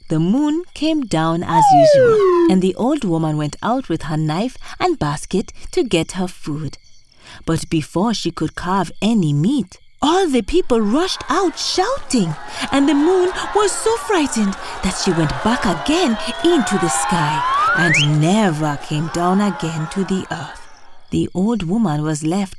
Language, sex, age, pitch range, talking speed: English, female, 30-49, 155-255 Hz, 160 wpm